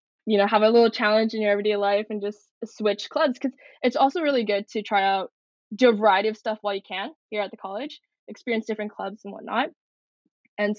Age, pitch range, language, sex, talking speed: 10-29, 200-235 Hz, English, female, 220 wpm